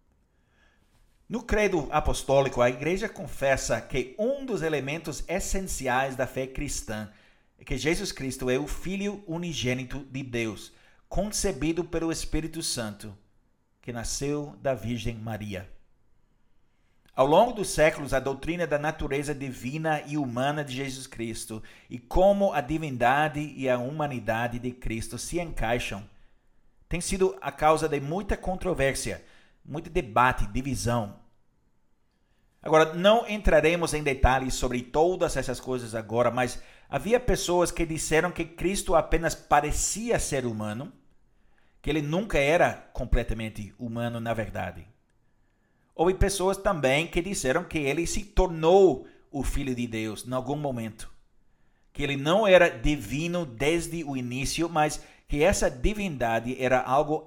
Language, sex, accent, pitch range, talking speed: Portuguese, male, Brazilian, 120-165 Hz, 135 wpm